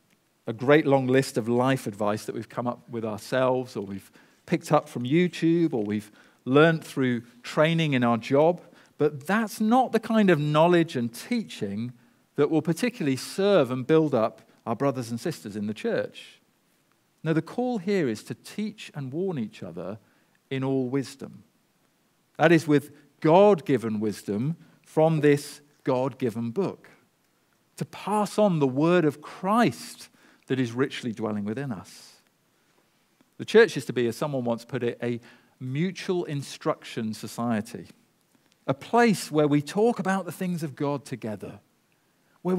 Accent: British